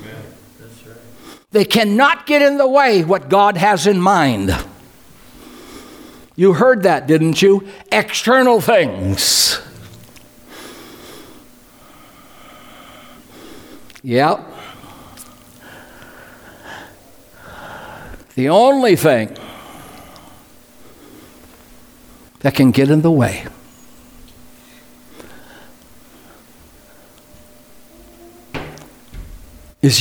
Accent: American